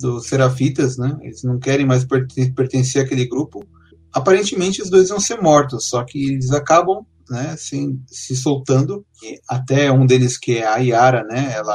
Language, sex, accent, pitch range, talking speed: Portuguese, male, Brazilian, 125-155 Hz, 180 wpm